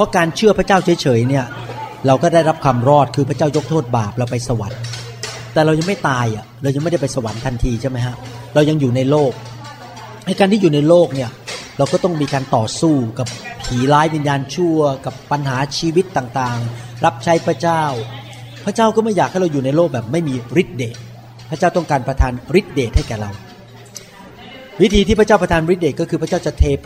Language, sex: Thai, male